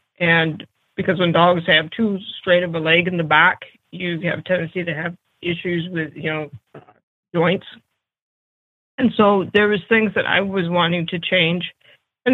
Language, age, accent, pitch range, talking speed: English, 20-39, American, 165-205 Hz, 180 wpm